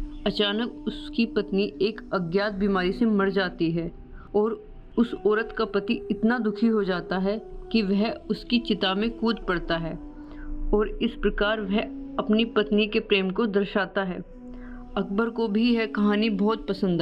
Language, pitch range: Hindi, 200-230 Hz